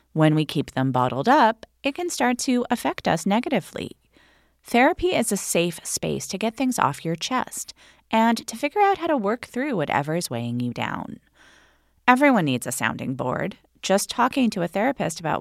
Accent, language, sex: American, English, female